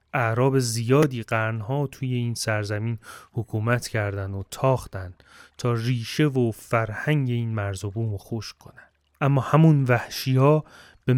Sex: male